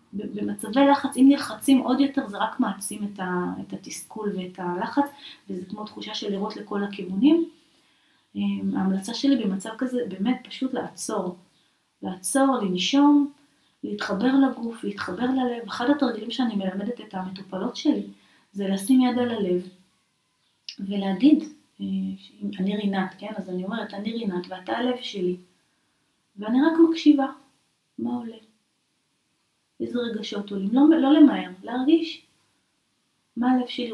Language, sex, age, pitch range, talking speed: Hebrew, female, 30-49, 195-260 Hz, 130 wpm